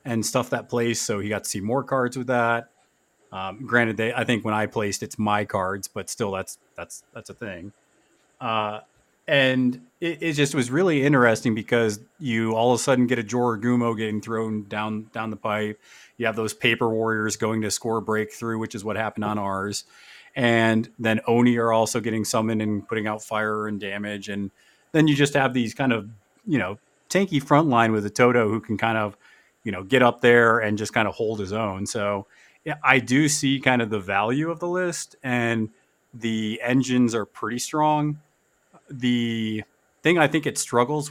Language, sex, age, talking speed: English, male, 30-49, 200 wpm